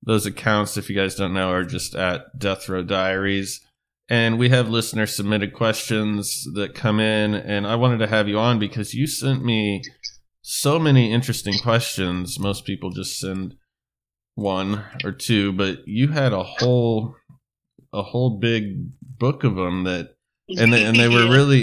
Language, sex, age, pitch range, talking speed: English, male, 20-39, 90-115 Hz, 170 wpm